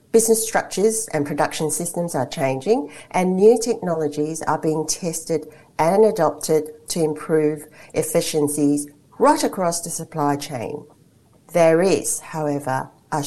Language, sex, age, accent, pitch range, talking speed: English, female, 50-69, Australian, 150-180 Hz, 120 wpm